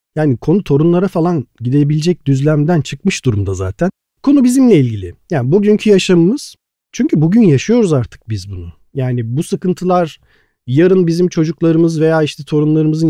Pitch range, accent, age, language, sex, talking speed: 140-185 Hz, native, 40-59, Turkish, male, 135 wpm